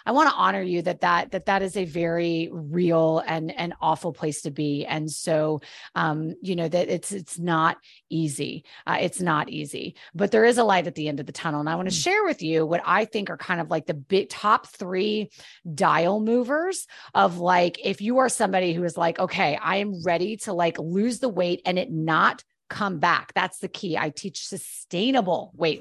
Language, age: English, 30-49